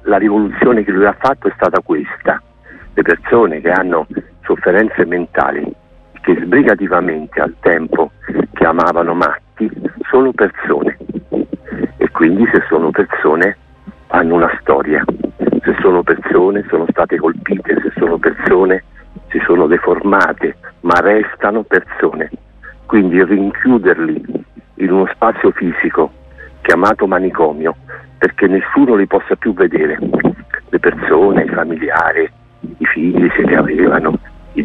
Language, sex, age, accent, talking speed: Italian, male, 50-69, native, 120 wpm